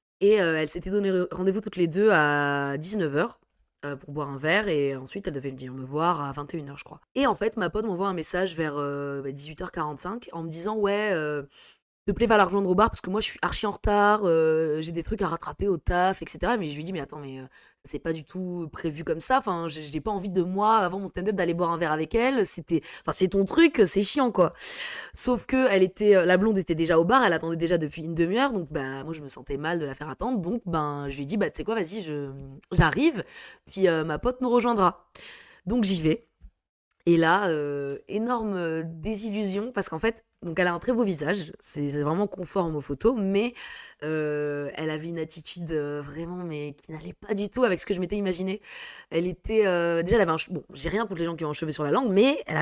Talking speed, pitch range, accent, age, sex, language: 250 wpm, 155-210 Hz, French, 20-39, female, French